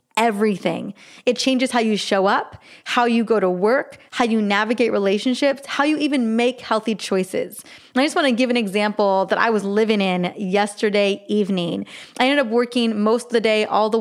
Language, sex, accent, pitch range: English, female, American, 205-245 Hz